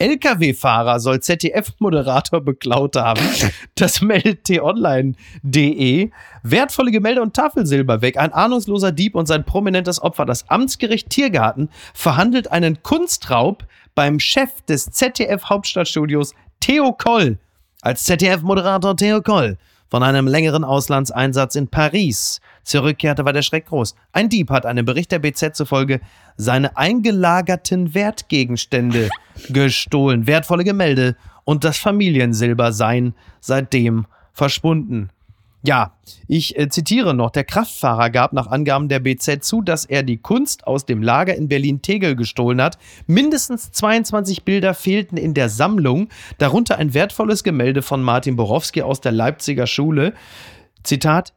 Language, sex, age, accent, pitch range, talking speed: German, male, 30-49, German, 130-185 Hz, 125 wpm